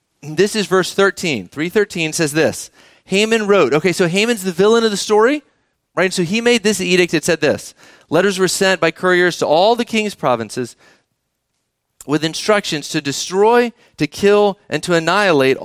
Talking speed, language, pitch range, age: 175 wpm, English, 150-210 Hz, 40-59